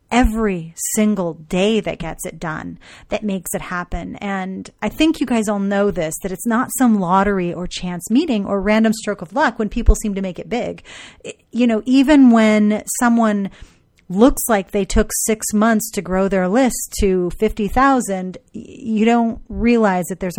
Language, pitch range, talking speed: English, 180-230 Hz, 180 wpm